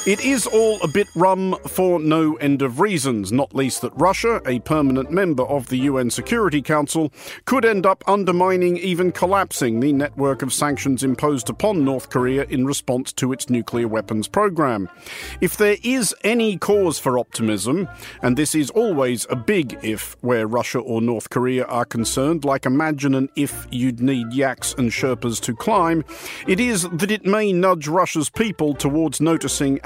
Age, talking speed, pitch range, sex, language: 50-69, 175 wpm, 130-185 Hz, male, English